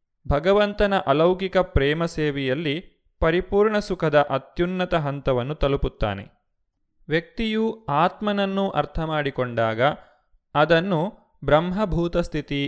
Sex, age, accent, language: male, 20-39, native, Kannada